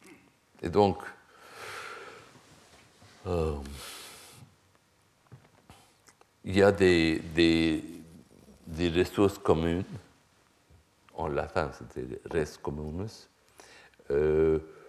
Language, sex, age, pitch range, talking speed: French, male, 60-79, 75-105 Hz, 55 wpm